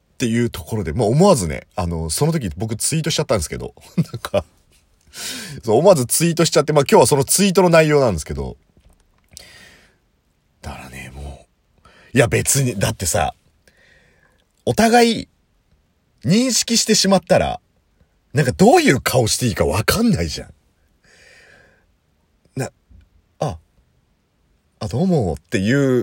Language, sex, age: Japanese, male, 40-59